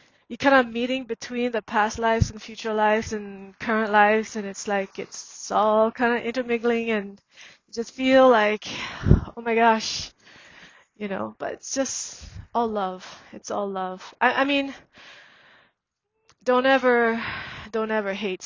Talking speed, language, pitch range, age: 155 wpm, English, 195-220 Hz, 20-39